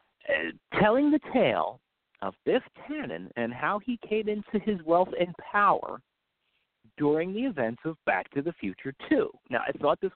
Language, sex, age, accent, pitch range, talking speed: English, male, 40-59, American, 110-155 Hz, 170 wpm